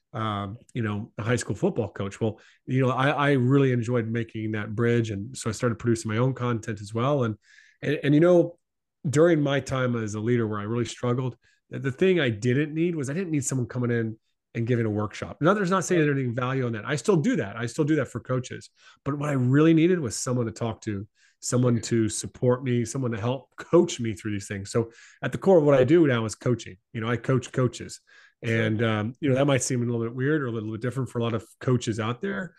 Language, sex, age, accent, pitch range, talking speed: English, male, 30-49, American, 115-140 Hz, 255 wpm